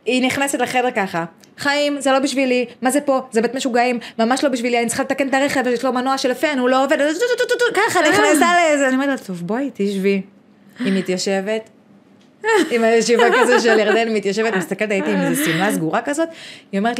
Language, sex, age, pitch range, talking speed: Hebrew, female, 20-39, 195-265 Hz, 200 wpm